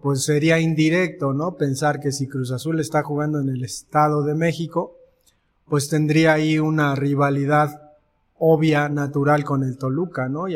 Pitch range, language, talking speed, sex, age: 140-175 Hz, Spanish, 160 wpm, male, 30-49